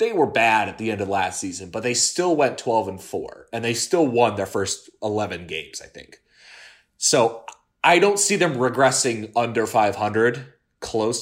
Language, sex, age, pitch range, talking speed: English, male, 20-39, 100-120 Hz, 185 wpm